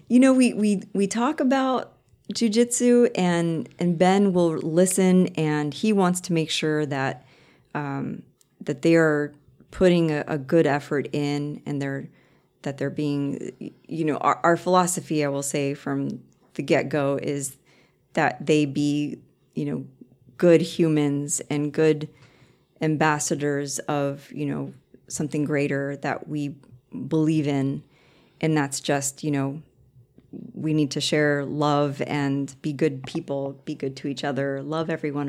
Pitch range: 140-165 Hz